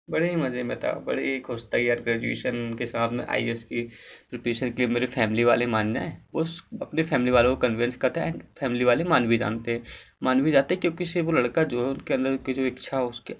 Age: 20-39